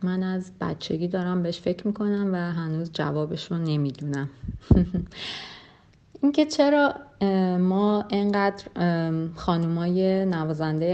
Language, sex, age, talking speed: Persian, female, 30-49, 95 wpm